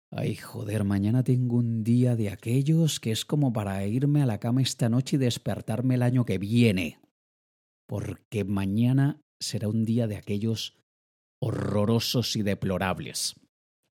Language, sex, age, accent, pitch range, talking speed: Spanish, male, 30-49, Spanish, 100-140 Hz, 145 wpm